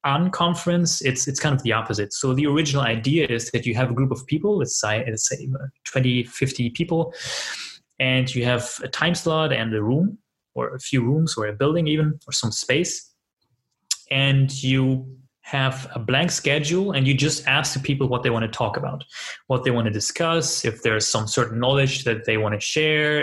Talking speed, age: 200 wpm, 20-39